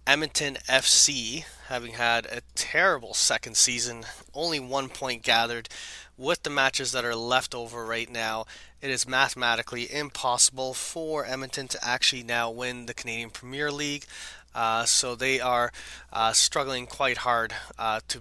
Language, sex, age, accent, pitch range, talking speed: English, male, 20-39, American, 115-135 Hz, 150 wpm